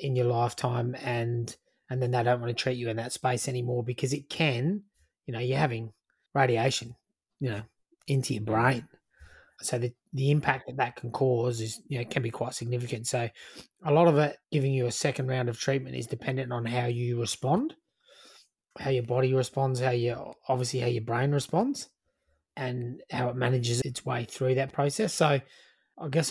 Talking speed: 195 wpm